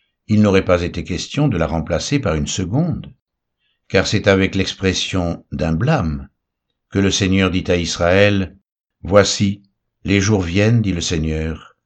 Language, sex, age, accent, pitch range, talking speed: French, male, 60-79, French, 85-115 Hz, 155 wpm